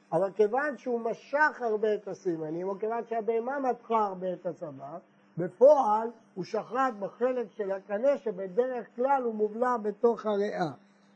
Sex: male